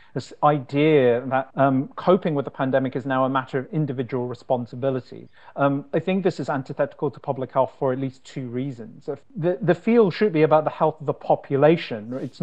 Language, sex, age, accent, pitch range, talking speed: English, male, 40-59, British, 130-160 Hz, 200 wpm